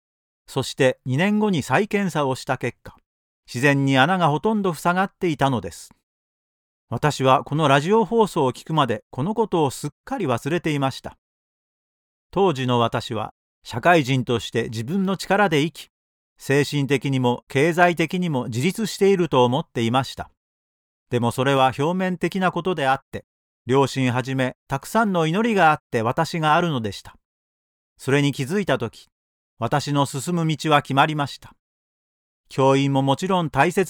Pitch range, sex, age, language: 125-170 Hz, male, 40-59, Japanese